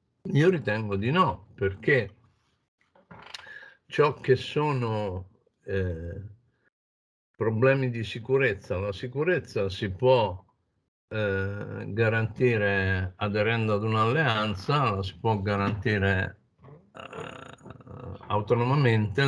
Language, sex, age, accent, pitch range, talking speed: Italian, male, 50-69, native, 95-125 Hz, 85 wpm